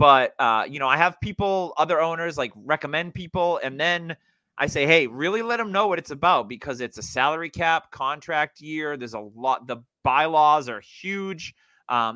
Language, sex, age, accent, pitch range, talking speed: English, male, 30-49, American, 120-160 Hz, 190 wpm